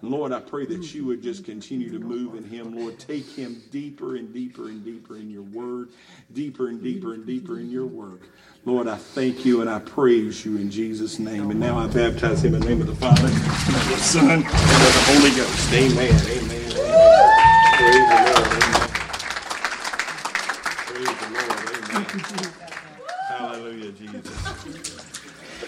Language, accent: English, American